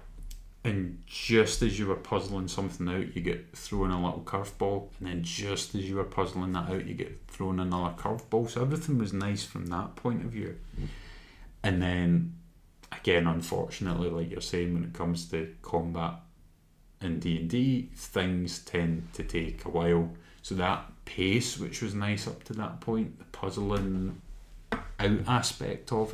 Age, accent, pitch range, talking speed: 30-49, British, 85-95 Hz, 170 wpm